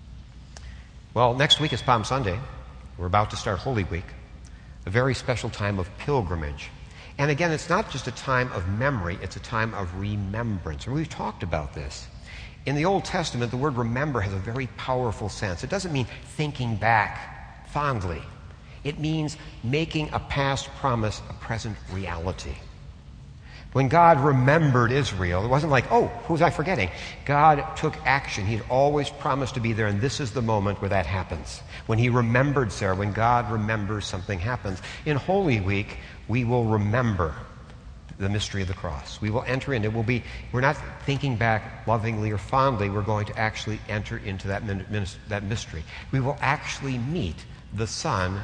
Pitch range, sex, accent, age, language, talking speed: 100-135 Hz, male, American, 60-79, English, 170 wpm